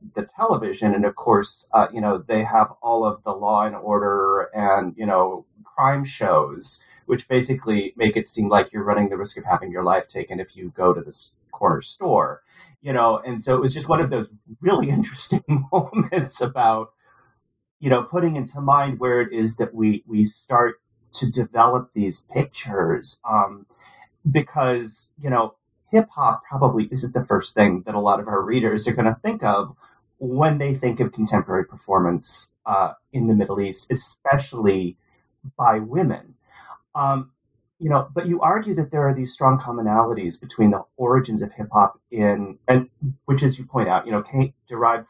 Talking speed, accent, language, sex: 180 wpm, American, English, male